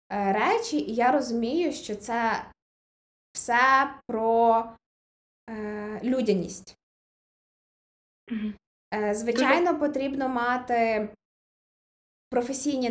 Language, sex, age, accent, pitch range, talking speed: Ukrainian, female, 20-39, native, 215-245 Hz, 60 wpm